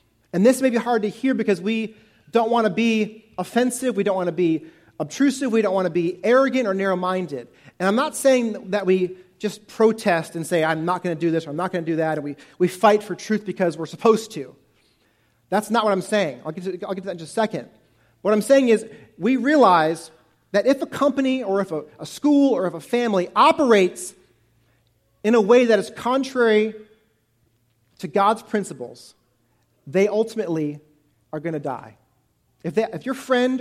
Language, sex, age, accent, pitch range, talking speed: English, male, 40-59, American, 165-230 Hz, 205 wpm